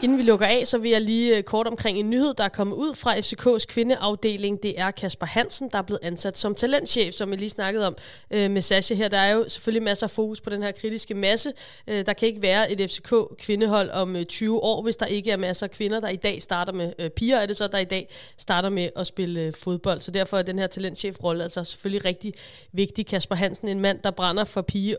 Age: 20-39